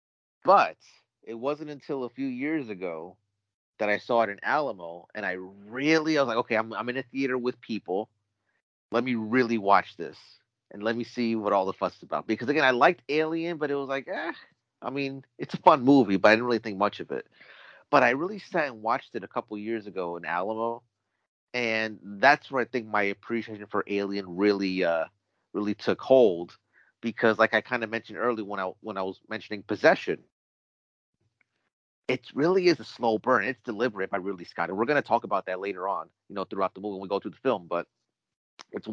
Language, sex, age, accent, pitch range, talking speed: English, male, 30-49, American, 105-130 Hz, 215 wpm